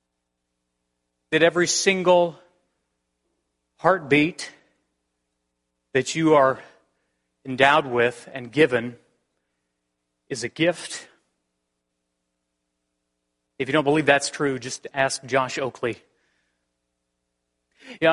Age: 30-49